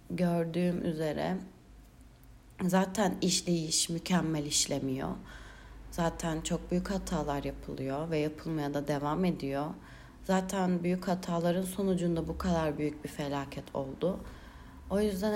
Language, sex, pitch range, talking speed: Turkish, female, 150-185 Hz, 110 wpm